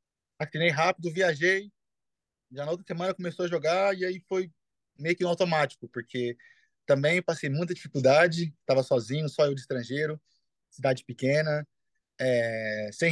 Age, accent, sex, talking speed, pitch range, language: 20-39, Brazilian, male, 140 wpm, 130-155 Hz, Portuguese